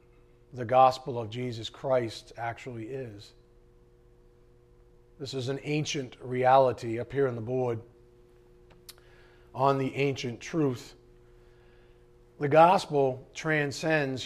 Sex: male